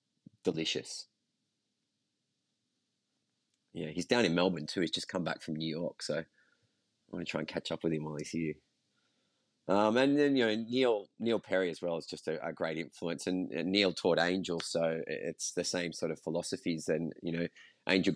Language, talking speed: English, 190 wpm